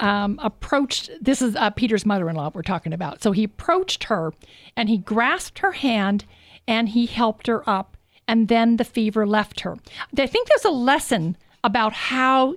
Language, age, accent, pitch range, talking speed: English, 50-69, American, 210-265 Hz, 175 wpm